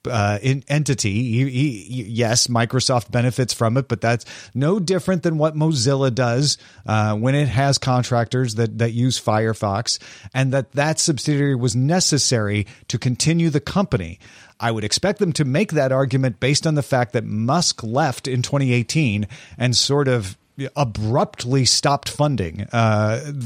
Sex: male